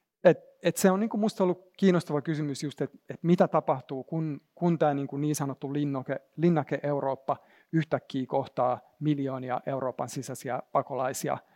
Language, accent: Finnish, native